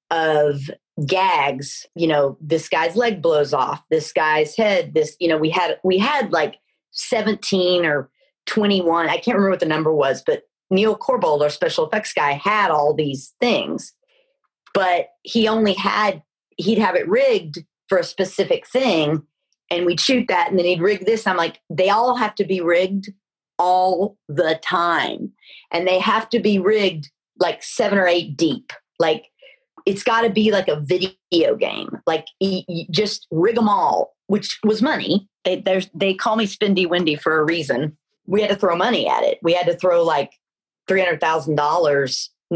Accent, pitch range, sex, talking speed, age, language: American, 165-215 Hz, female, 175 wpm, 40-59, English